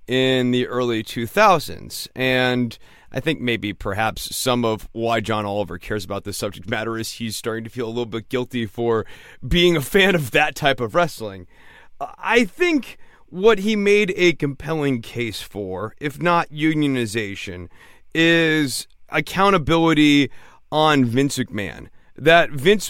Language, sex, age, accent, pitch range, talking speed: English, male, 30-49, American, 115-155 Hz, 145 wpm